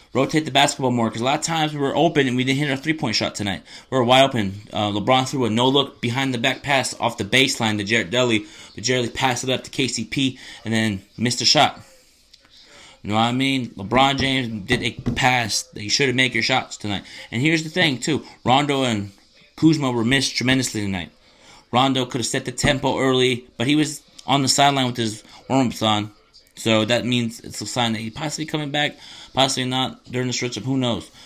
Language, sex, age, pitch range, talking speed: English, male, 30-49, 115-135 Hz, 225 wpm